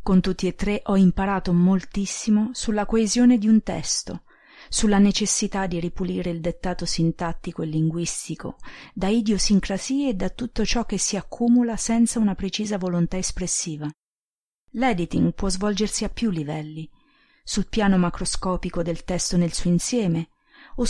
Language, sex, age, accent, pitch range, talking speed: Italian, female, 40-59, native, 170-220 Hz, 145 wpm